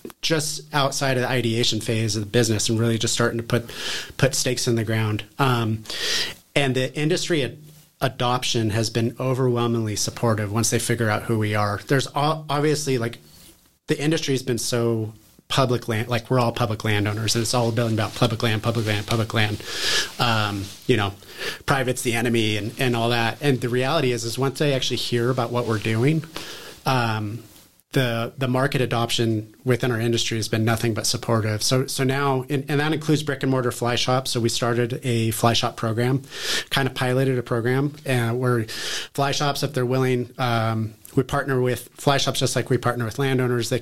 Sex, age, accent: male, 30-49, American